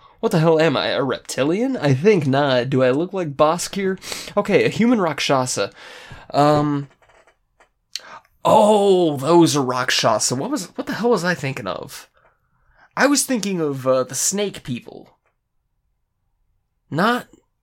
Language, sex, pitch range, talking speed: English, male, 130-185 Hz, 145 wpm